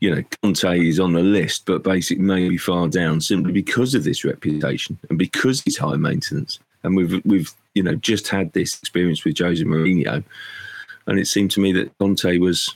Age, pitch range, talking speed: 40-59, 90-130 Hz, 200 wpm